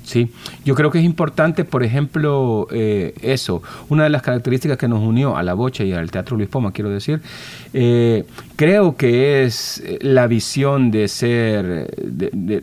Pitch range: 105-135 Hz